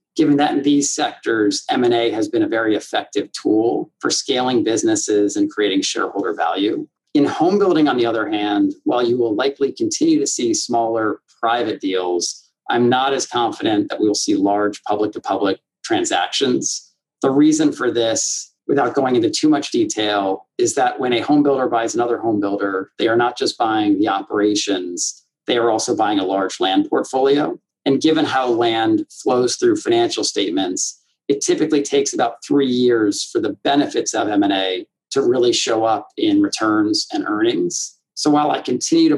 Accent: American